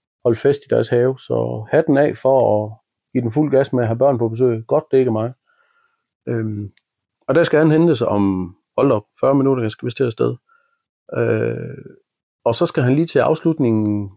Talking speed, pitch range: 210 wpm, 115-140 Hz